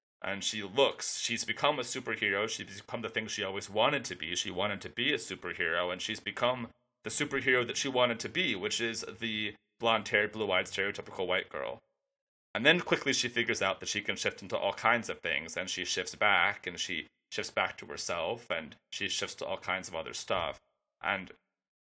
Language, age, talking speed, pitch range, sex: English, 30-49, 205 wpm, 95-125 Hz, male